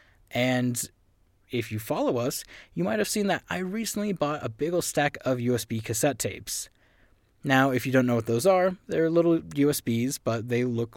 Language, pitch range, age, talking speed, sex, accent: English, 115-150 Hz, 20-39, 190 wpm, male, American